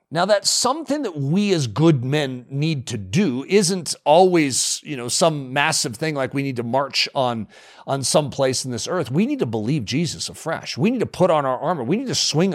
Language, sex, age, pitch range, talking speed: English, male, 40-59, 125-185 Hz, 225 wpm